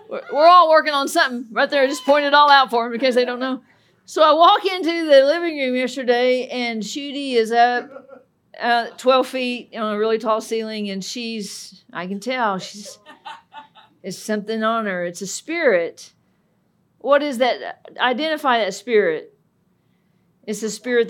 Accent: American